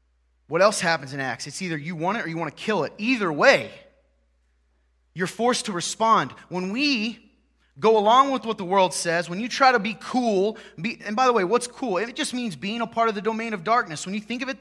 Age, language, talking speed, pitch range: 30-49, English, 240 wpm, 145-220 Hz